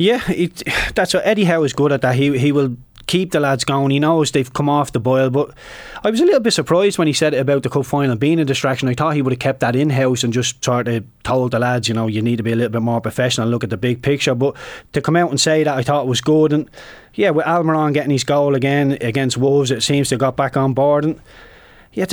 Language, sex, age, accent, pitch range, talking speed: English, male, 20-39, Irish, 120-145 Hz, 285 wpm